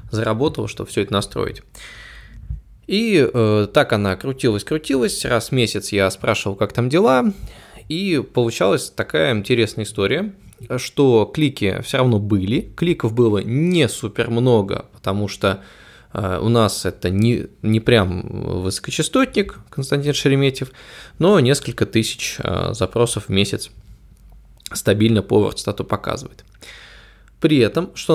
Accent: native